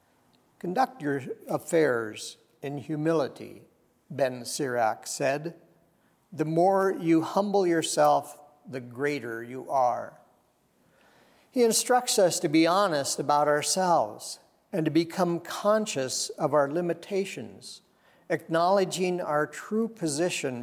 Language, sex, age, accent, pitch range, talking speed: English, male, 50-69, American, 140-175 Hz, 105 wpm